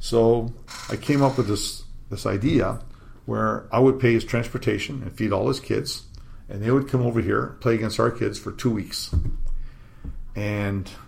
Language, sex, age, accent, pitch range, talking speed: English, male, 50-69, American, 100-125 Hz, 180 wpm